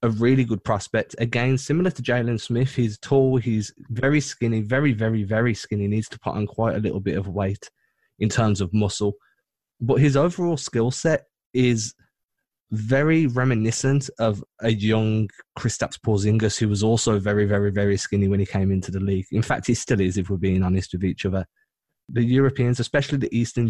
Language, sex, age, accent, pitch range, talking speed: English, male, 20-39, British, 105-125 Hz, 190 wpm